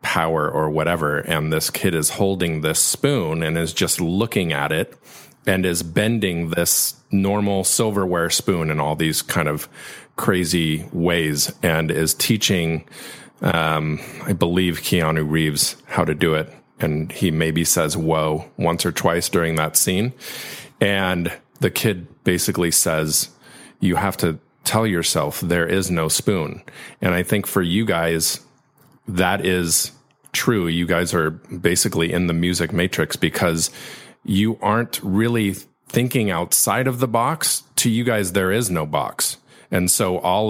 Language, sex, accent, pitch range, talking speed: English, male, American, 80-95 Hz, 155 wpm